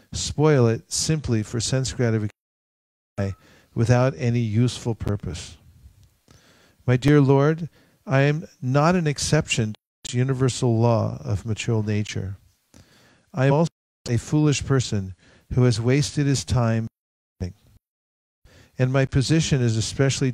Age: 50-69